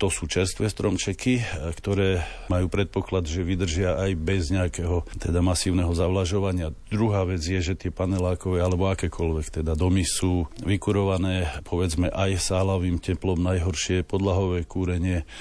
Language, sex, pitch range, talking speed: Slovak, male, 85-95 Hz, 130 wpm